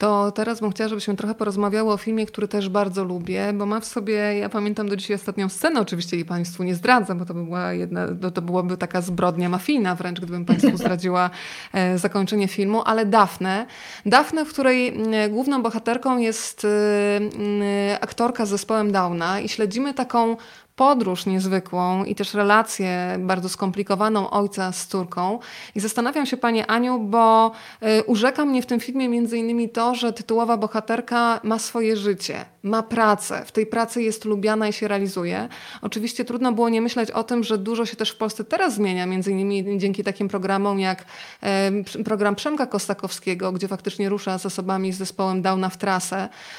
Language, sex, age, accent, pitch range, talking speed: Polish, female, 20-39, native, 190-225 Hz, 175 wpm